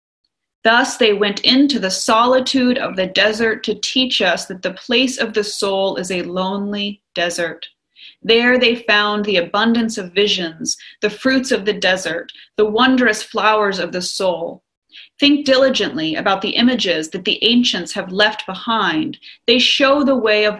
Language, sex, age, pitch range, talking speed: English, female, 30-49, 200-250 Hz, 165 wpm